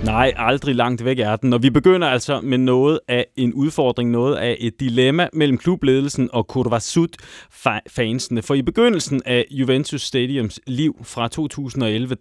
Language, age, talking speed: Danish, 30-49, 155 wpm